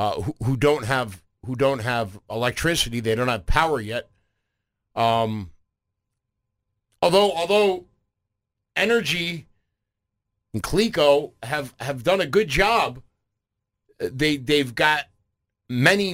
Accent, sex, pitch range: American, male, 105-140 Hz